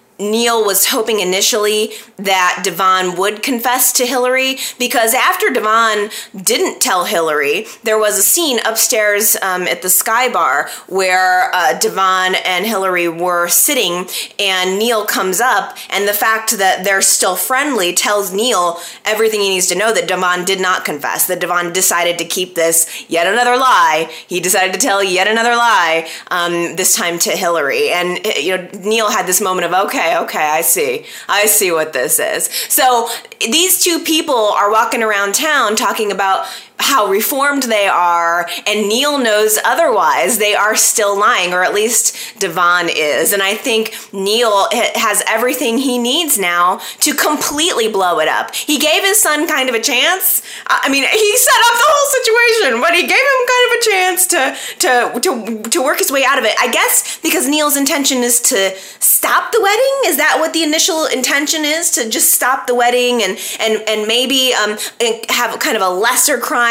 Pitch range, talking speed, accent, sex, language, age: 190-275 Hz, 180 wpm, American, female, English, 20-39